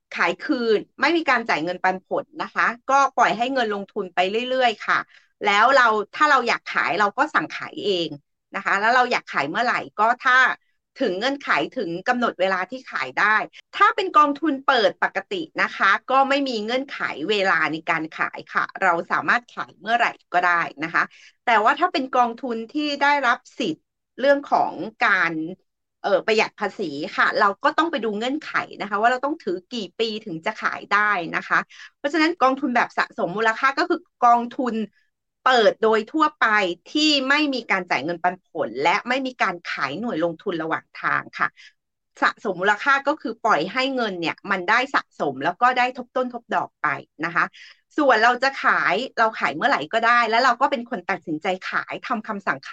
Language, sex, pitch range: English, female, 185-270 Hz